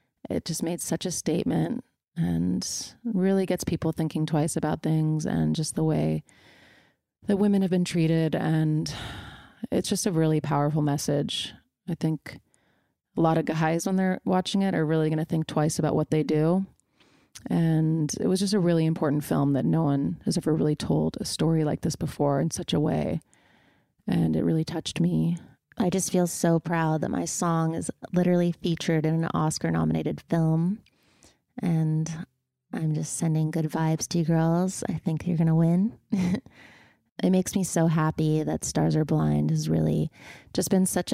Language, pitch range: English, 155-175 Hz